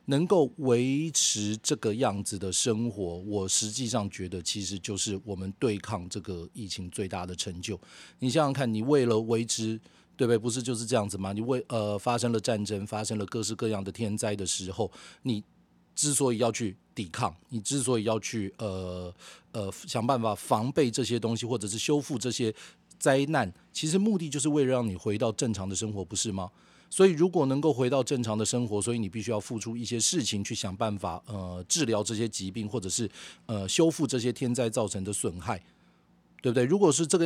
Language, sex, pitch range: Chinese, male, 100-125 Hz